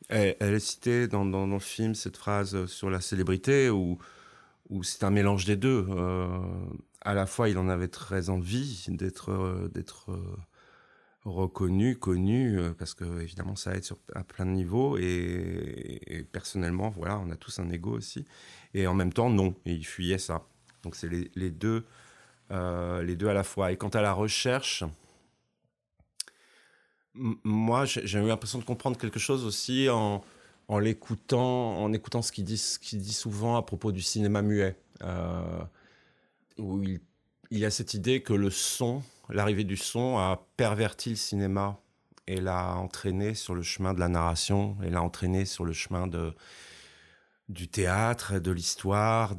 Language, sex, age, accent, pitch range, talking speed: French, male, 30-49, French, 90-110 Hz, 175 wpm